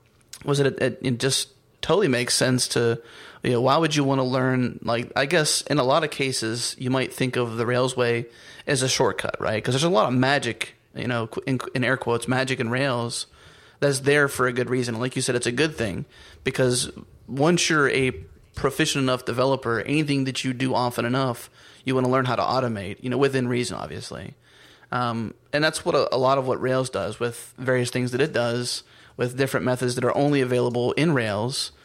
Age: 30-49